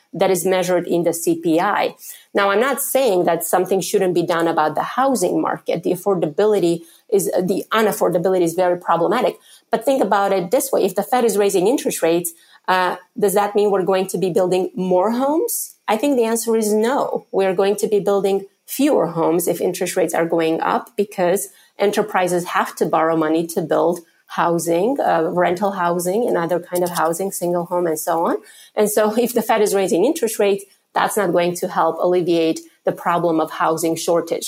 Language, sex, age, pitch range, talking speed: English, female, 30-49, 175-210 Hz, 195 wpm